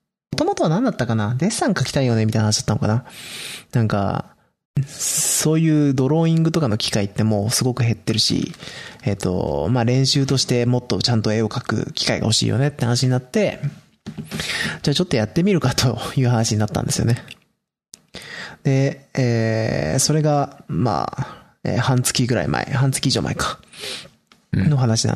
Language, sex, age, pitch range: Japanese, male, 20-39, 110-150 Hz